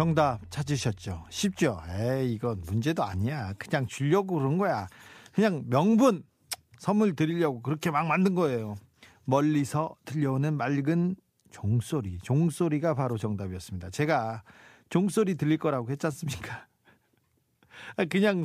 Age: 40-59